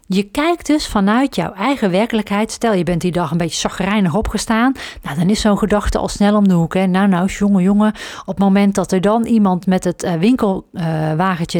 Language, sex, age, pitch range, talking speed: Dutch, female, 40-59, 180-220 Hz, 210 wpm